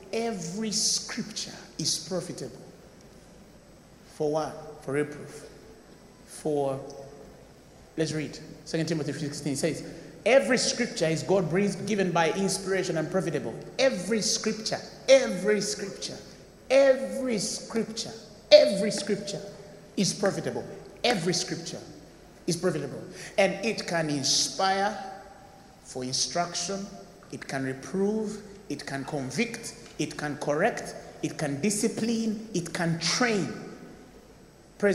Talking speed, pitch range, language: 105 wpm, 165-215 Hz, English